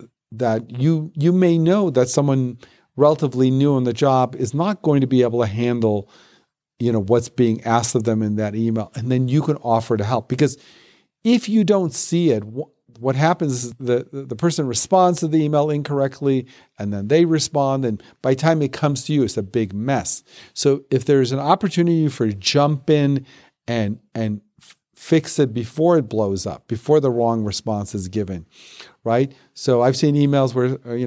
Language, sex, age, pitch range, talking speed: English, male, 50-69, 115-145 Hz, 195 wpm